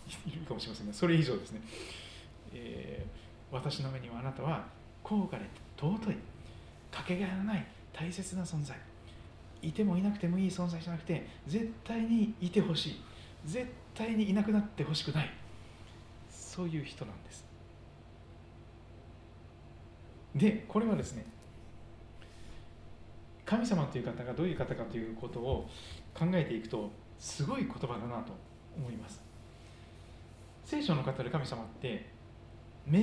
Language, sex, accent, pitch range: Japanese, male, native, 110-170 Hz